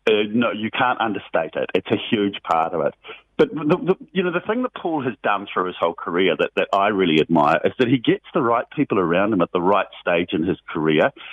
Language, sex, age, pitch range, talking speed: English, male, 50-69, 125-165 Hz, 255 wpm